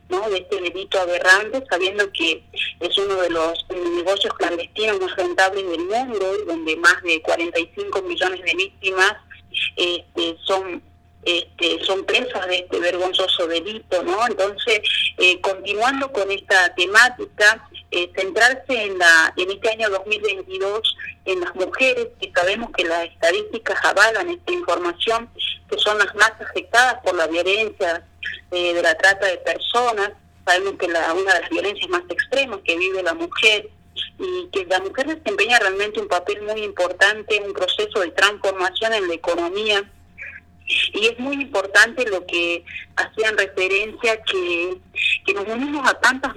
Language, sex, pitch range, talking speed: Spanish, female, 180-230 Hz, 155 wpm